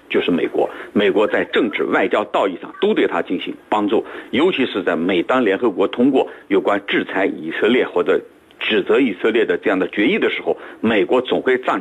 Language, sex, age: Chinese, male, 50-69